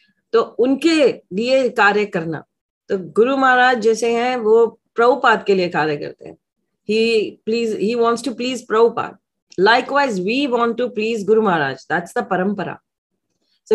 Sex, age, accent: female, 30-49, native